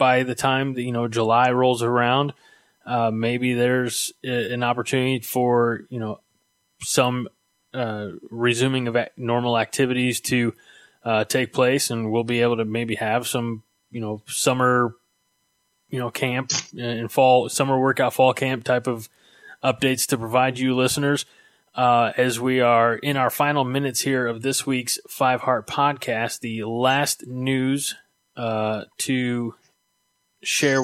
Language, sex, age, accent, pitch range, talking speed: English, male, 20-39, American, 115-130 Hz, 145 wpm